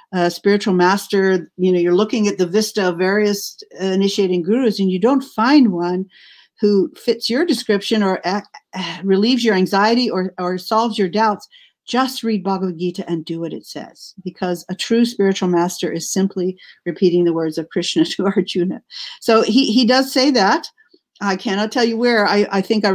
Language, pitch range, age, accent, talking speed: English, 180-220 Hz, 50-69, American, 190 wpm